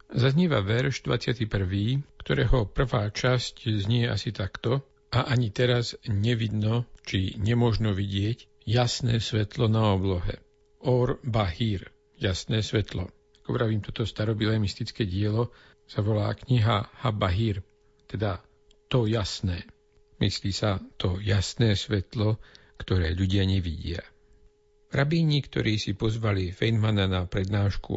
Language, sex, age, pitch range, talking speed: Slovak, male, 50-69, 100-120 Hz, 110 wpm